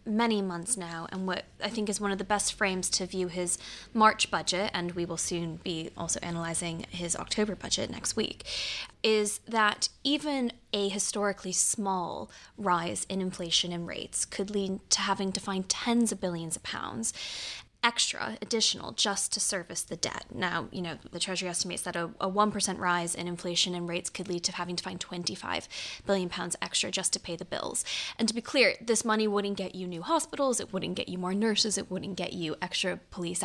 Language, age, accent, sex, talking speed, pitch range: English, 10-29, American, female, 200 wpm, 180-210 Hz